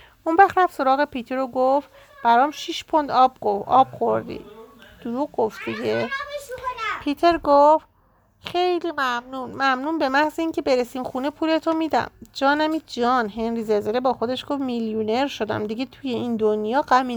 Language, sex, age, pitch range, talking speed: Persian, female, 40-59, 230-300 Hz, 150 wpm